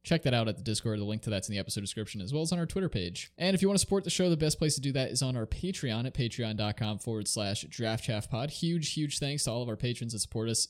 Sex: male